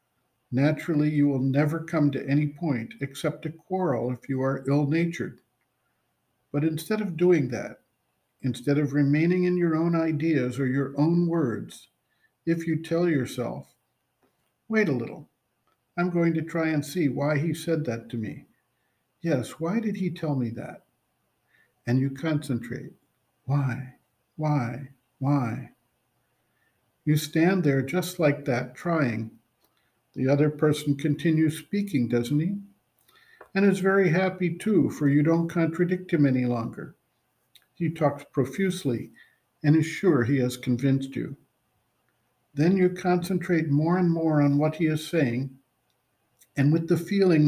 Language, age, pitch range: English, 50-69, 135-170 Hz